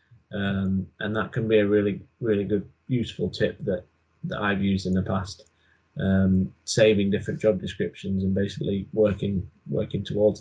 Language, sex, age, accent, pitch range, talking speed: English, male, 10-29, British, 100-125 Hz, 160 wpm